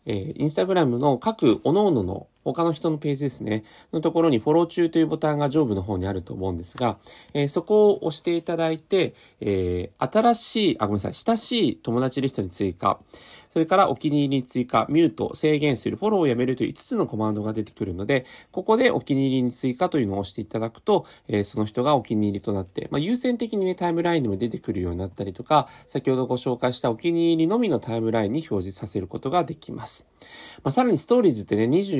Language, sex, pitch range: Japanese, male, 105-165 Hz